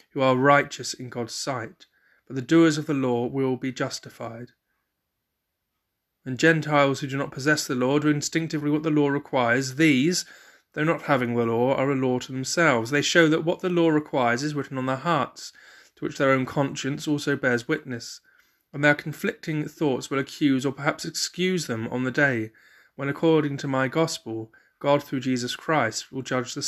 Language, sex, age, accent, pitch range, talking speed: English, male, 30-49, British, 120-145 Hz, 190 wpm